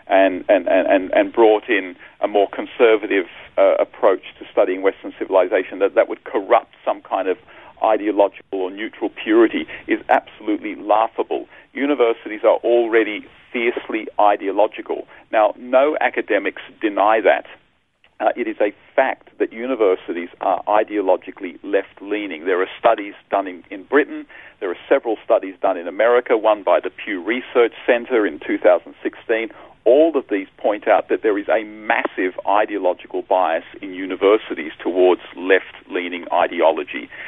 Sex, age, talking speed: male, 40-59, 140 wpm